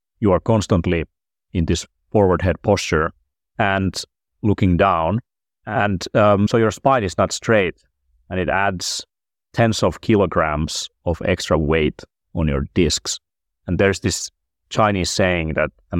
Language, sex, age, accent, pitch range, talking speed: English, male, 30-49, Finnish, 75-100 Hz, 145 wpm